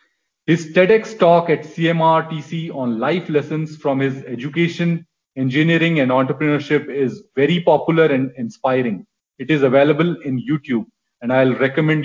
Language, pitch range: English, 135-165 Hz